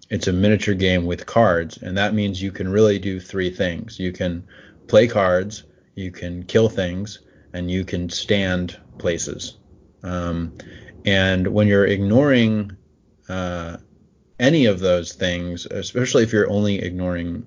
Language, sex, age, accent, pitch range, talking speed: English, male, 30-49, American, 90-110 Hz, 150 wpm